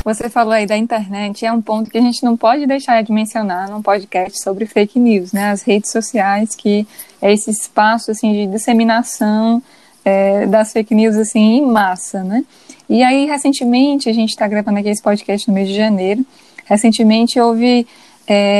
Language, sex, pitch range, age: Portuguese, female, 210-245 Hz, 10-29